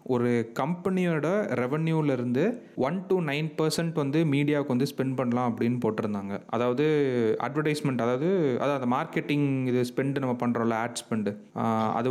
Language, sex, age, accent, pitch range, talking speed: Tamil, male, 30-49, native, 120-150 Hz, 140 wpm